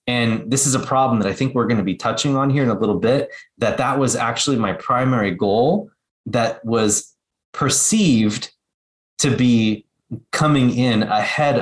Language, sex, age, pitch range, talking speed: English, male, 30-49, 105-125 Hz, 175 wpm